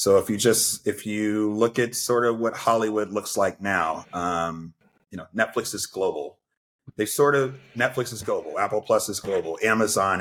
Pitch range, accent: 105-125 Hz, American